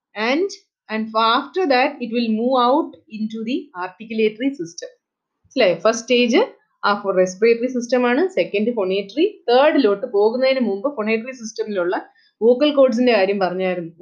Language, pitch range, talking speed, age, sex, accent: English, 205-265 Hz, 140 wpm, 30-49, female, Indian